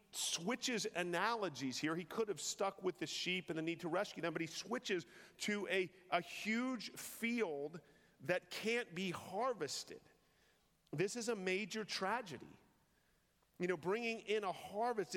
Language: English